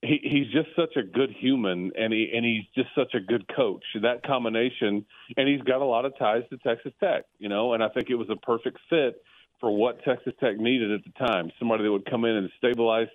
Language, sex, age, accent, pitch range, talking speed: English, male, 40-59, American, 105-125 Hz, 240 wpm